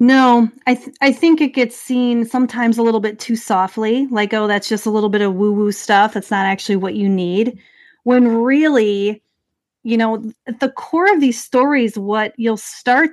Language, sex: English, female